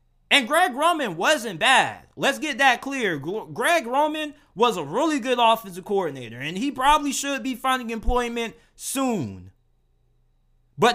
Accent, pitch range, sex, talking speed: American, 140-235 Hz, male, 145 wpm